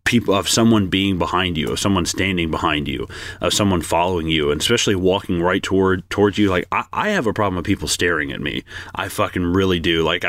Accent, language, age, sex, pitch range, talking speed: American, English, 30-49, male, 90-110 Hz, 220 wpm